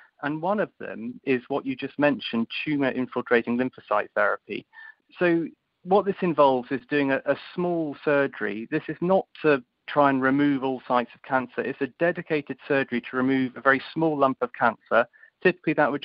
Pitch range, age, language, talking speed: 125-155 Hz, 40-59, English, 185 wpm